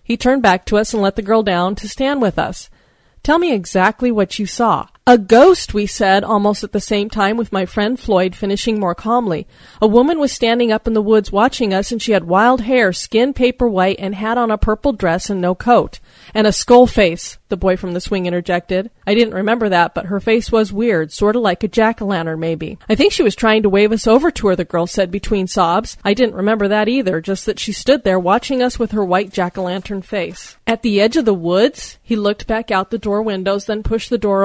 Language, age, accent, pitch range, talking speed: English, 30-49, American, 190-225 Hz, 240 wpm